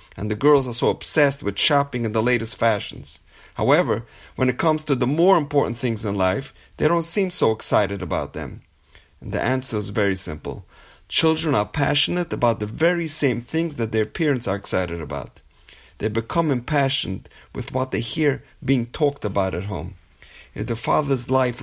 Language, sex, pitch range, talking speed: English, male, 105-140 Hz, 185 wpm